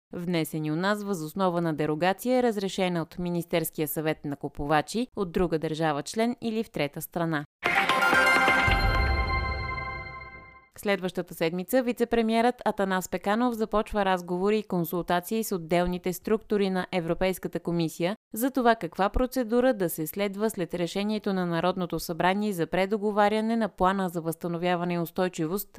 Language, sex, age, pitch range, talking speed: Bulgarian, female, 30-49, 165-215 Hz, 130 wpm